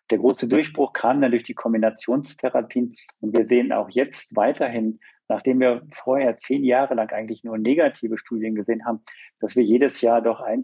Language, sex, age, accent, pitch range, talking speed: German, male, 50-69, German, 110-125 Hz, 180 wpm